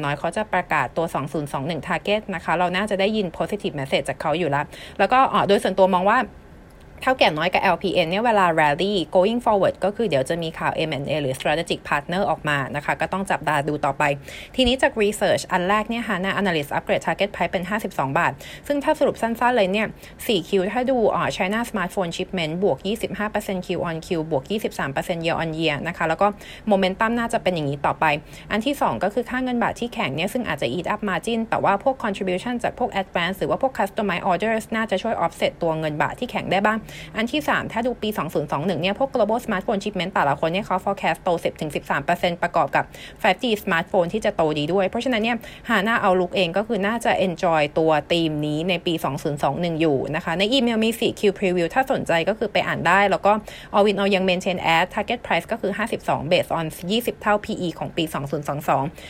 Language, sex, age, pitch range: Thai, female, 30-49, 165-215 Hz